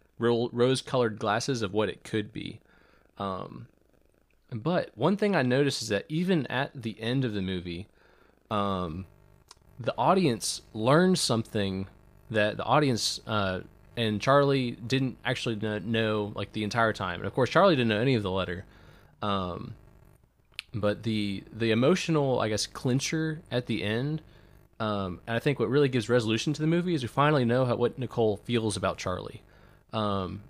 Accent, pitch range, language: American, 100-130 Hz, English